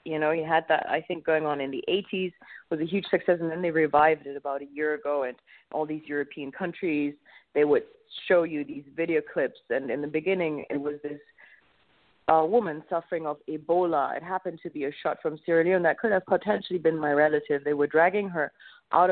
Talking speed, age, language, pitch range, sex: 220 wpm, 30-49, English, 150-180 Hz, female